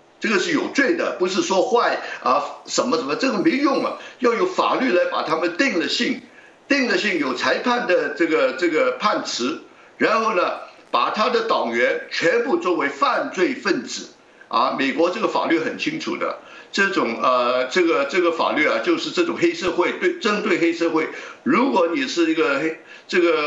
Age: 60-79